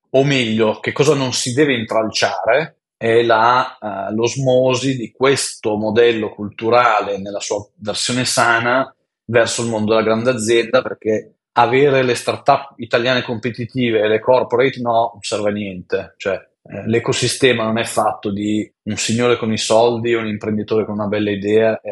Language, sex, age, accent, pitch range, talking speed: Italian, male, 30-49, native, 100-125 Hz, 165 wpm